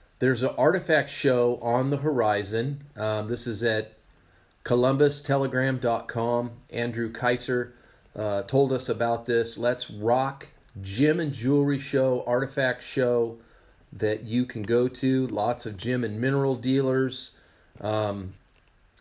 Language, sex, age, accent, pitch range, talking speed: English, male, 40-59, American, 115-130 Hz, 125 wpm